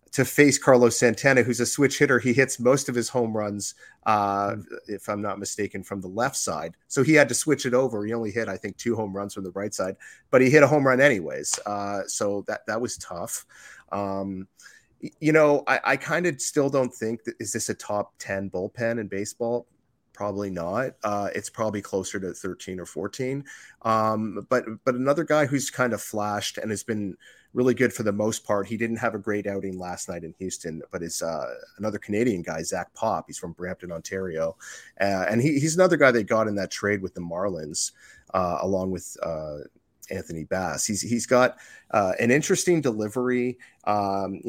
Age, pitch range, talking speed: 30-49, 95-125 Hz, 205 wpm